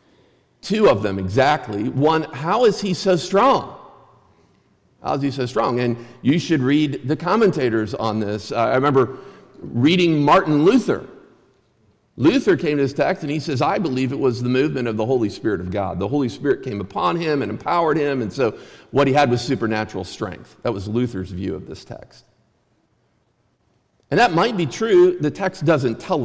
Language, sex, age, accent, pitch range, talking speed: English, male, 50-69, American, 115-160 Hz, 185 wpm